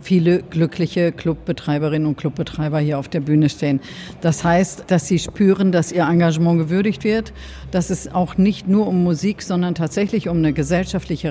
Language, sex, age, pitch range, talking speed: German, female, 50-69, 160-195 Hz, 170 wpm